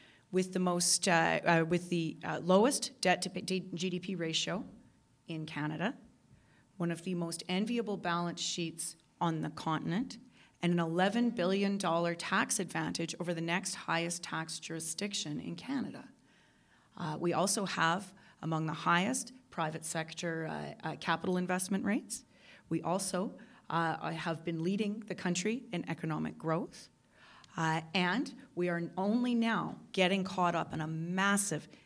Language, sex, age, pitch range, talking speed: English, female, 30-49, 165-205 Hz, 145 wpm